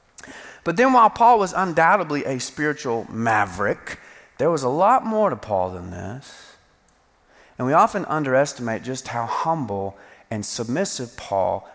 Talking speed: 145 wpm